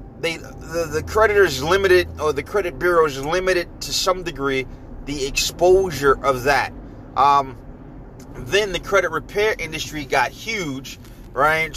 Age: 30-49